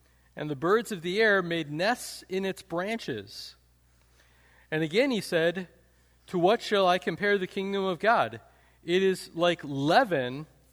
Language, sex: English, male